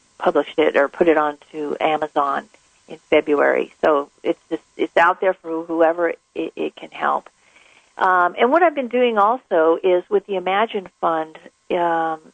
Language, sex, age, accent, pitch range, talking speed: English, female, 50-69, American, 160-185 Hz, 165 wpm